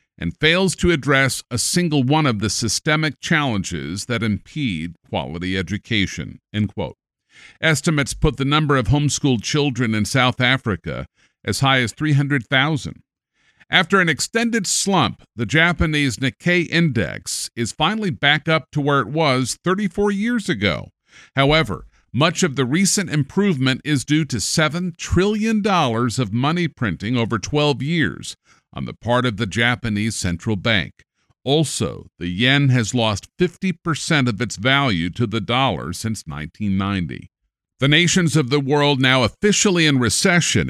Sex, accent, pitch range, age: male, American, 115-165 Hz, 50-69